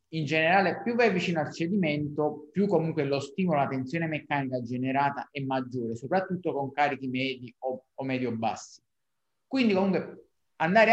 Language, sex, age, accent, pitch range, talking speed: Italian, male, 30-49, native, 130-165 Hz, 150 wpm